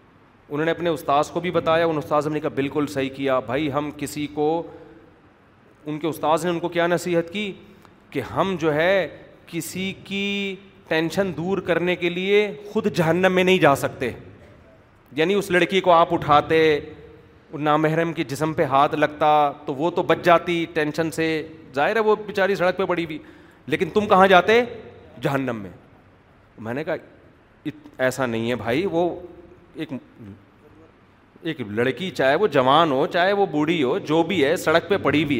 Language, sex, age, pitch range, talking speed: Urdu, male, 40-59, 150-200 Hz, 175 wpm